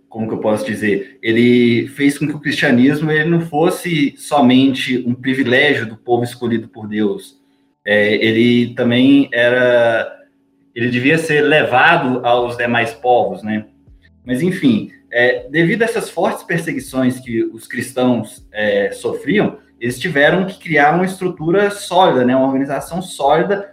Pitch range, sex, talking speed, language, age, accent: 120-160 Hz, male, 145 wpm, Portuguese, 20-39, Brazilian